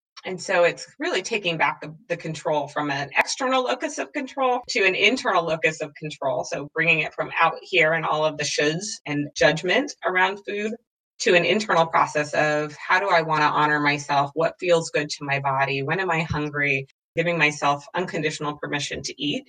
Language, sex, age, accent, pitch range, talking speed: English, female, 30-49, American, 150-170 Hz, 195 wpm